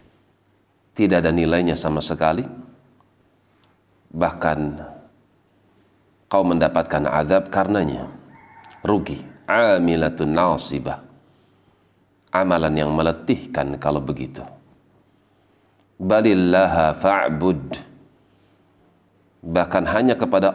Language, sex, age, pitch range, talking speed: Indonesian, male, 40-59, 80-95 Hz, 65 wpm